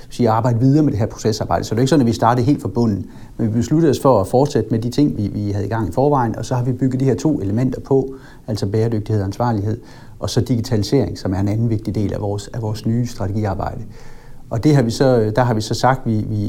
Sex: male